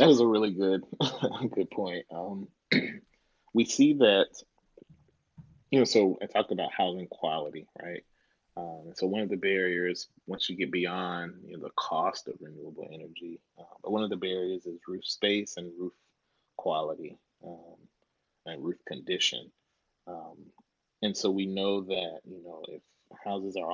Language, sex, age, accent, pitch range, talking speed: English, male, 30-49, American, 90-110 Hz, 155 wpm